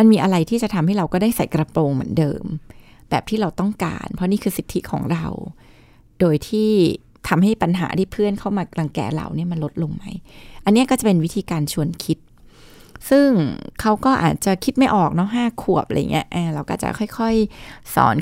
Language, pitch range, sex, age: Thai, 160-215 Hz, female, 20-39